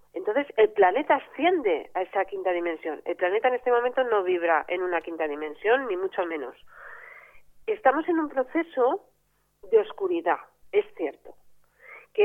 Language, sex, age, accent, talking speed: Spanish, female, 40-59, Spanish, 150 wpm